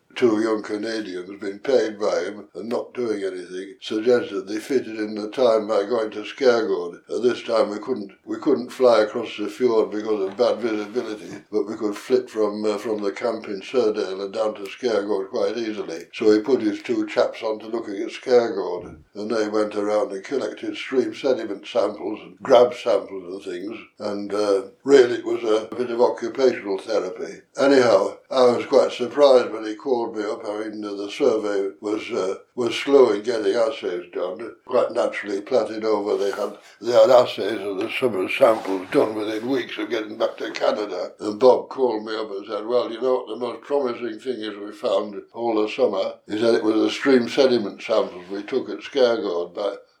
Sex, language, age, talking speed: male, English, 60-79, 200 wpm